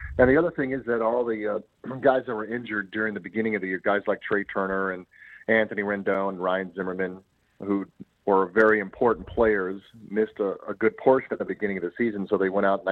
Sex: male